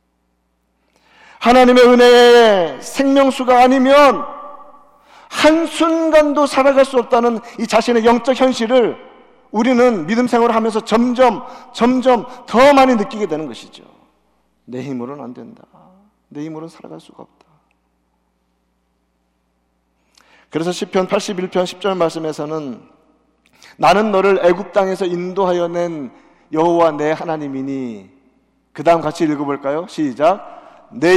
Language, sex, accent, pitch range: Korean, male, native, 160-250 Hz